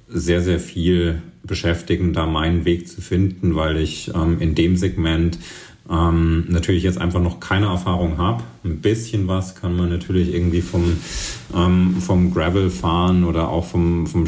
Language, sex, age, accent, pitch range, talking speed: German, male, 40-59, German, 80-90 Hz, 165 wpm